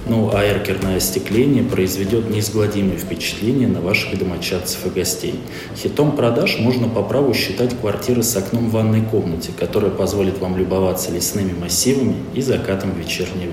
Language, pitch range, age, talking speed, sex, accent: Russian, 95-115 Hz, 20-39, 145 wpm, male, native